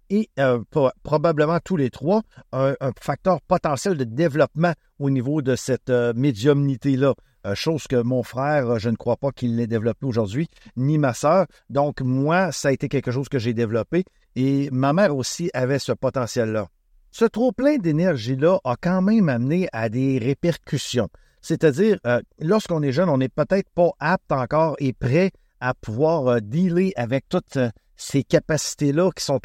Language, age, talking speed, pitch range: French, 50-69, 175 wpm, 125-165 Hz